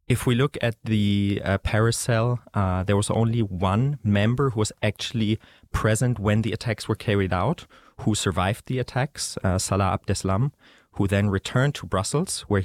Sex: male